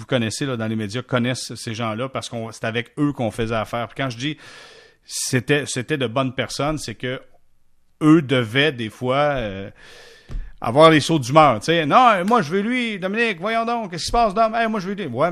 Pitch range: 115-160 Hz